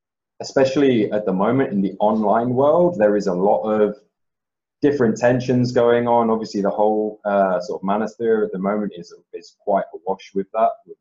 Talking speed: 185 wpm